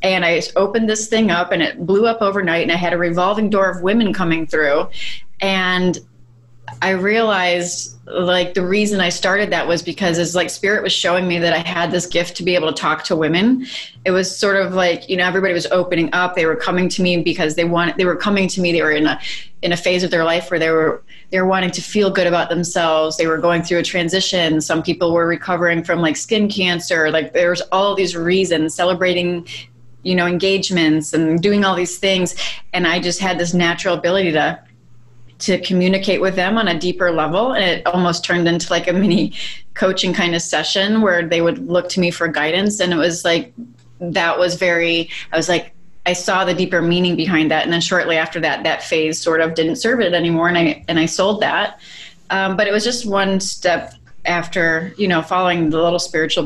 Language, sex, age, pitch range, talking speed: English, female, 30-49, 165-185 Hz, 220 wpm